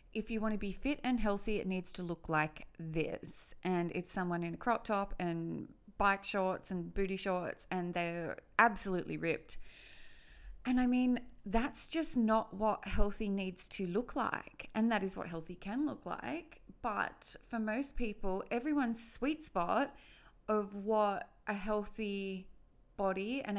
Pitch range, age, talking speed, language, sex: 190-225 Hz, 30-49, 165 wpm, English, female